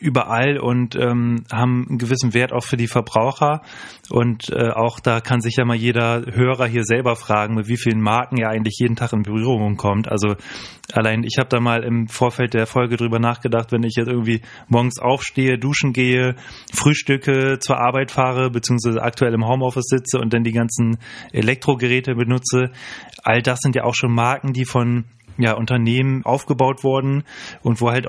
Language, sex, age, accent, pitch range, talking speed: German, male, 20-39, German, 115-125 Hz, 185 wpm